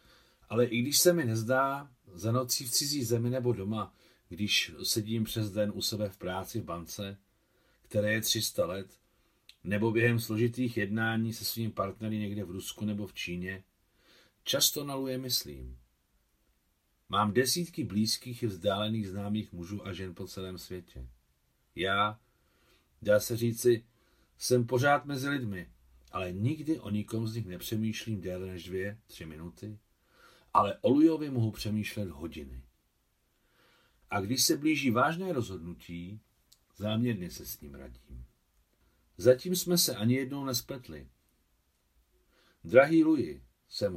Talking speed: 140 wpm